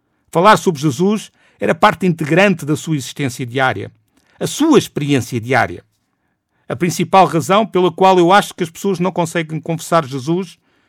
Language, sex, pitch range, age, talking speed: Portuguese, male, 140-190 Hz, 50-69, 155 wpm